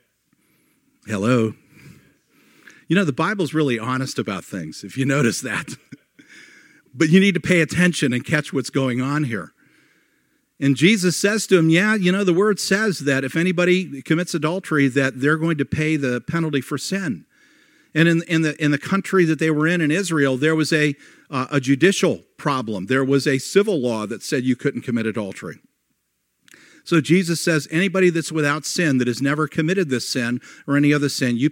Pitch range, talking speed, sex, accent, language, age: 130-175 Hz, 190 wpm, male, American, English, 50-69